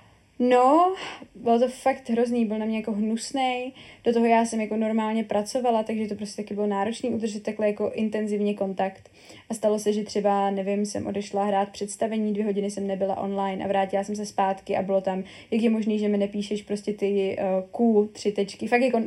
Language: Czech